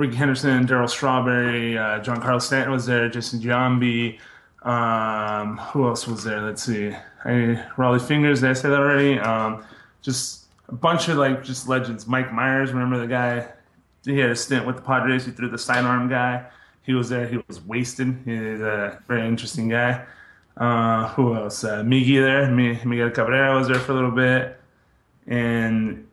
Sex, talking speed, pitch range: male, 180 wpm, 115-130 Hz